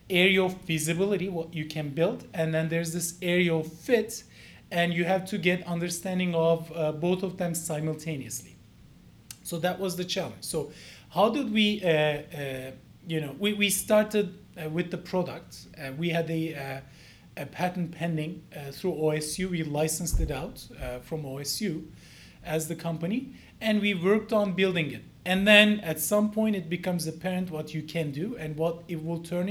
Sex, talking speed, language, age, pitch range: male, 180 wpm, English, 30-49, 155-185 Hz